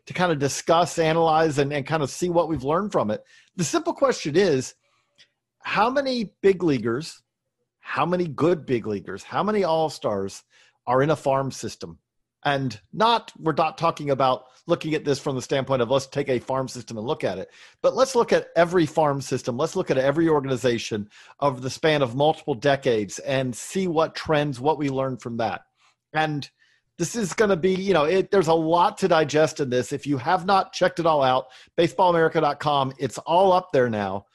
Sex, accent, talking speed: male, American, 200 wpm